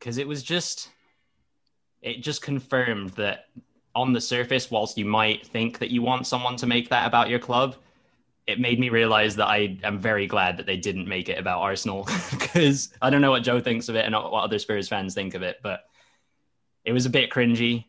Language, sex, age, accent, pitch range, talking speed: English, male, 10-29, British, 100-125 Hz, 215 wpm